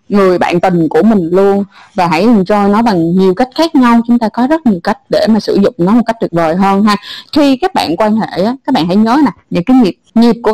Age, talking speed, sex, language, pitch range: 20-39, 275 wpm, female, Vietnamese, 210-290 Hz